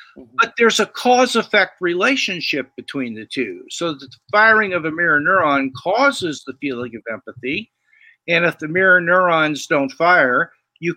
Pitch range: 150-220 Hz